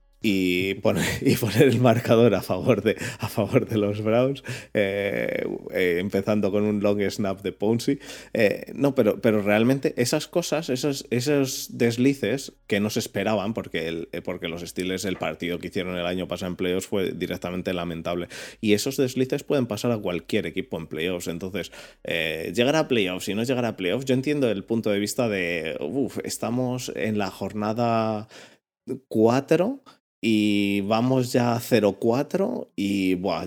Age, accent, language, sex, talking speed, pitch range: 20-39, Spanish, Spanish, male, 165 wpm, 95-125 Hz